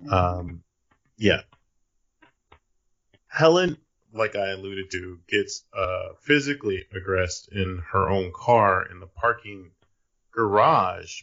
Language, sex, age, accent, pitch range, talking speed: English, male, 30-49, American, 90-110 Hz, 100 wpm